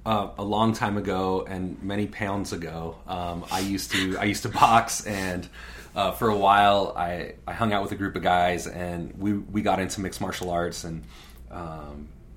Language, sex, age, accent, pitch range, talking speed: English, male, 30-49, American, 90-105 Hz, 200 wpm